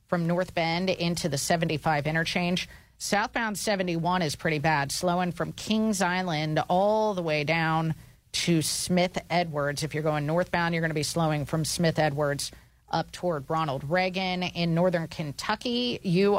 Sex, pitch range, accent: female, 145-180 Hz, American